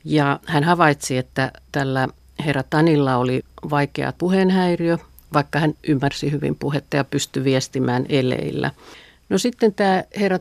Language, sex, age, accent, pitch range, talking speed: Finnish, female, 50-69, native, 135-160 Hz, 135 wpm